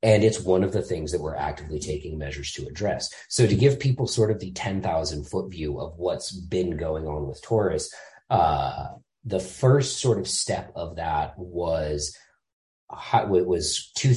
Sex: male